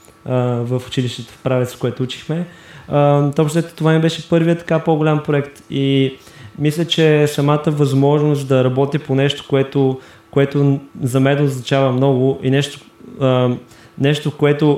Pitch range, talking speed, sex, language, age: 130-145 Hz, 135 wpm, male, Bulgarian, 20-39